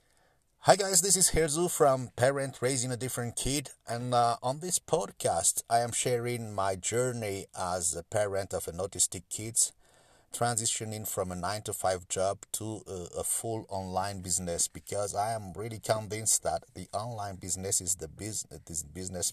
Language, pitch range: English, 90-120 Hz